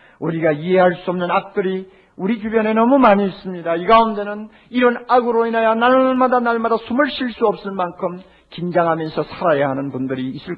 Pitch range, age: 125-200 Hz, 50-69